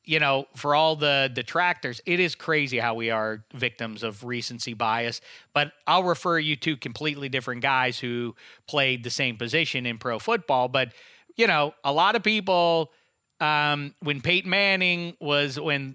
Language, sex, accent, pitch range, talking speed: English, male, American, 130-185 Hz, 170 wpm